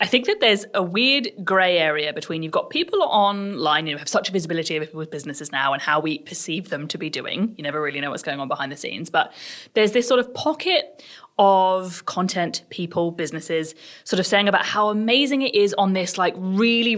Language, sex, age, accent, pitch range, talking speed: English, female, 20-39, British, 165-220 Hz, 220 wpm